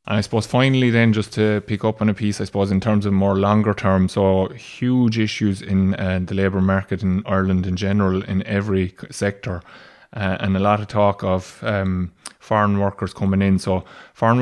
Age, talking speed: 20-39, 205 wpm